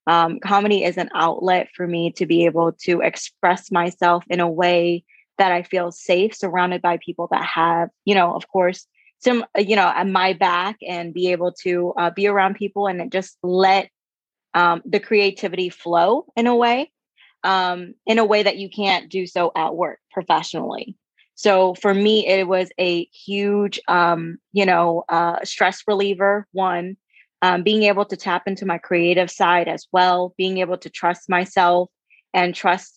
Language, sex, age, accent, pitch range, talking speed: English, female, 20-39, American, 175-200 Hz, 175 wpm